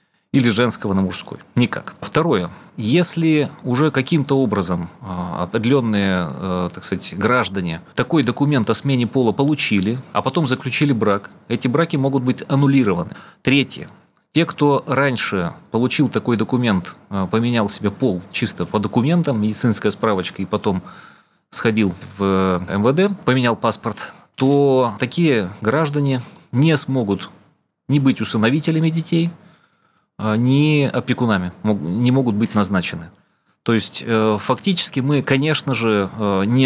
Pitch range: 105-140 Hz